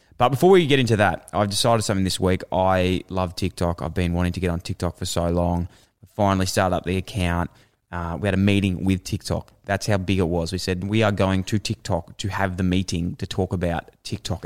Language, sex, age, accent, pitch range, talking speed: English, male, 20-39, Australian, 90-100 Hz, 235 wpm